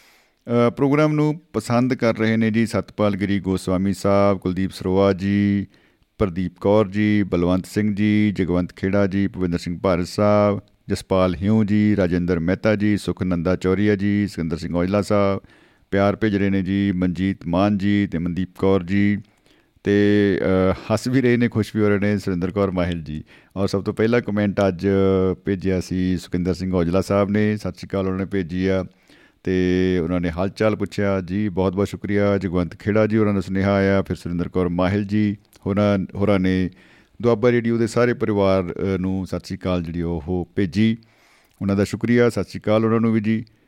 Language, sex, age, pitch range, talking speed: Punjabi, male, 50-69, 90-105 Hz, 175 wpm